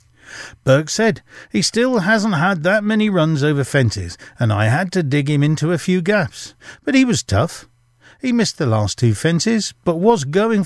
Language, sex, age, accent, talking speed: English, male, 50-69, British, 190 wpm